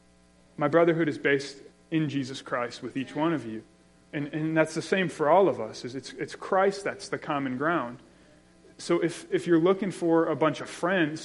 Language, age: English, 30-49